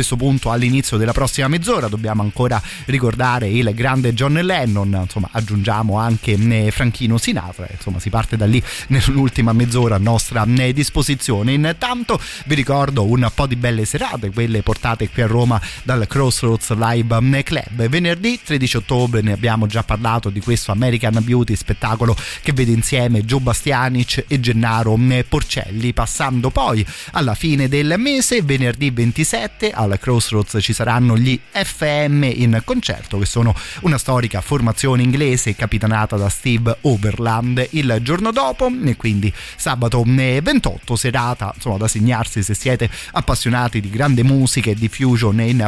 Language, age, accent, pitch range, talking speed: Italian, 30-49, native, 110-135 Hz, 150 wpm